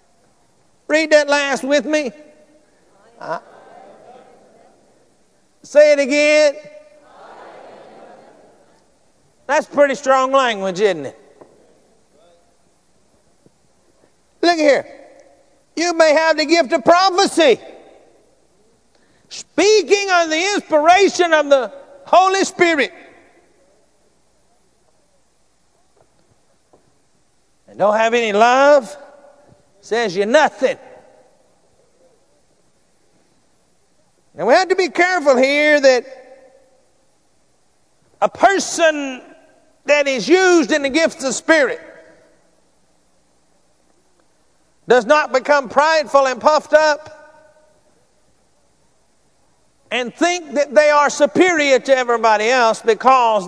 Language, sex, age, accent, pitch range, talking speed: English, male, 50-69, American, 265-325 Hz, 85 wpm